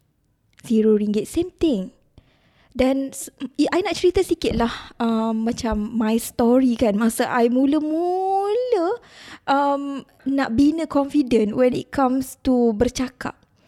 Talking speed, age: 120 wpm, 20-39